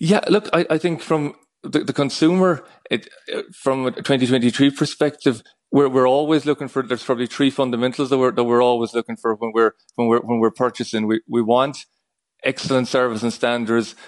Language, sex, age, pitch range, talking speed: English, male, 30-49, 110-125 Hz, 190 wpm